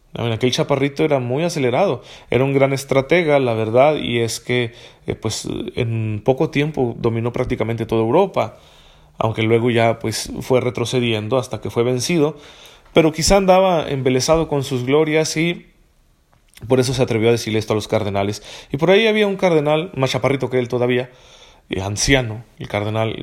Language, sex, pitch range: Spanish, male, 120-145 Hz